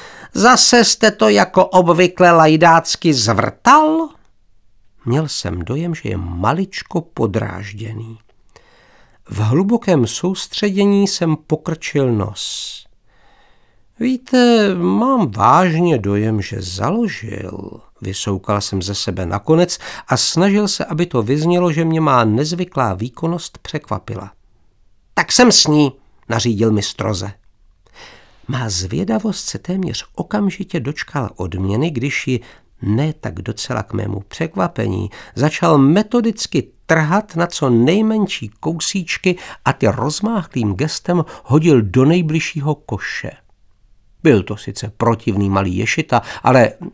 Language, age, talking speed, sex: Czech, 50-69, 110 wpm, male